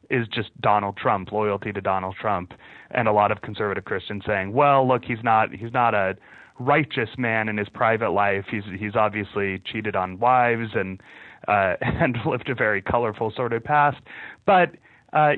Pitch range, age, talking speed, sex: 105-125 Hz, 30-49, 175 wpm, male